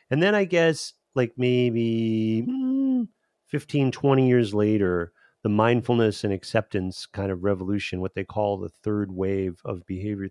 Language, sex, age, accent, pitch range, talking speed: English, male, 40-59, American, 100-125 Hz, 145 wpm